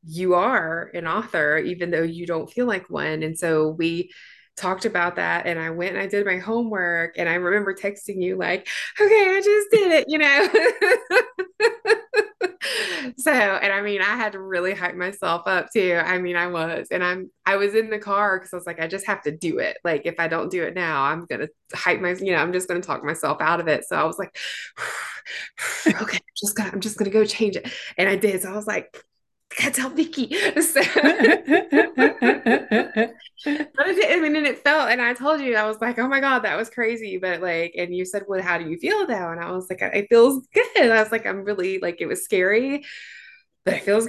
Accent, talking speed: American, 225 wpm